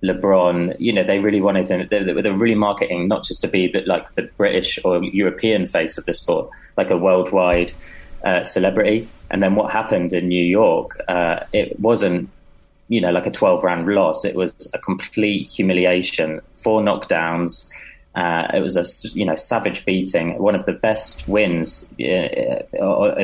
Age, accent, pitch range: 30-49, British, 90-100 Hz